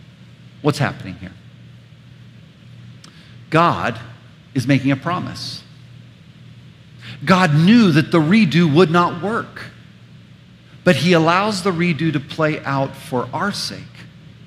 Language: English